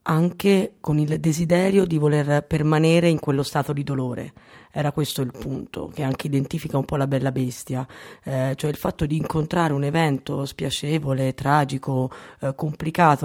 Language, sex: Italian, female